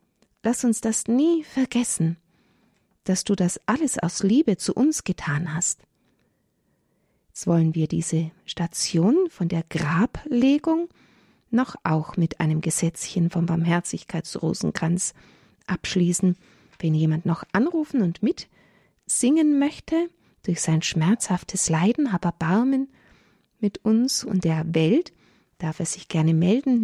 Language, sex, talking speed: German, female, 120 wpm